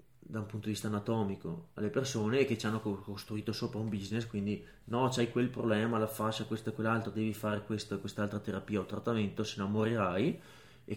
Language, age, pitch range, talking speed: Italian, 20-39, 105-120 Hz, 200 wpm